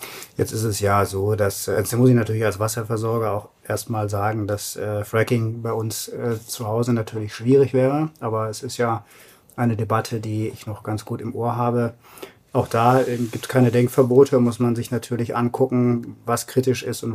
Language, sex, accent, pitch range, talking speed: German, male, German, 110-130 Hz, 185 wpm